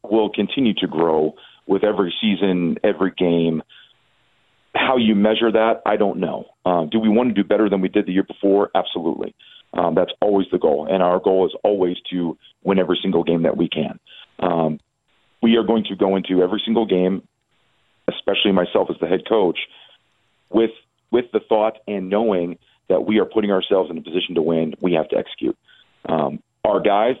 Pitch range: 90-110 Hz